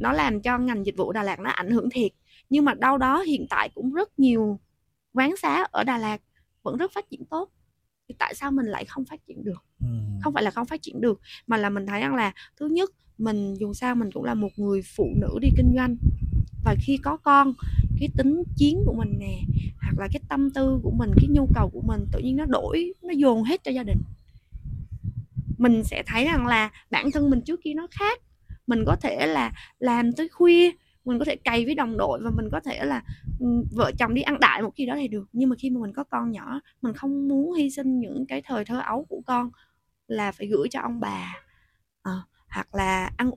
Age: 20-39